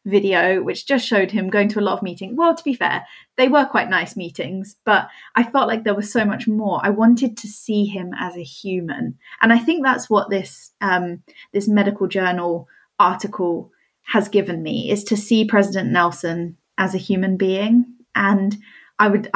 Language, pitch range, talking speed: English, 185-220 Hz, 195 wpm